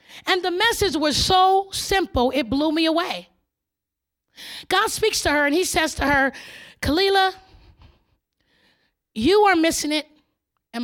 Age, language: 30-49, English